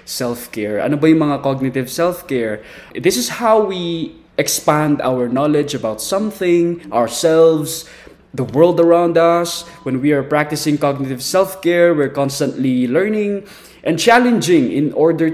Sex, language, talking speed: male, Filipino, 130 wpm